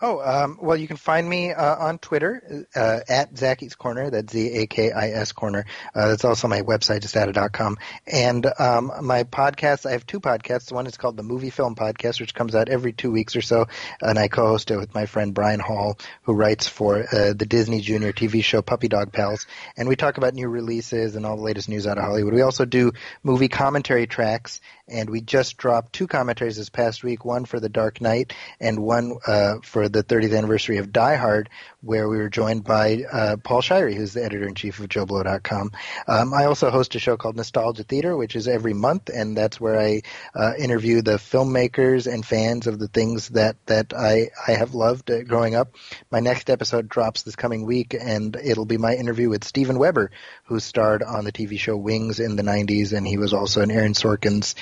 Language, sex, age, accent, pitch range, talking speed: English, male, 30-49, American, 105-125 Hz, 210 wpm